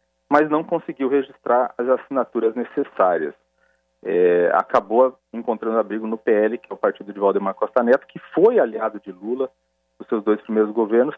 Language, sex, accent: Portuguese, male, Brazilian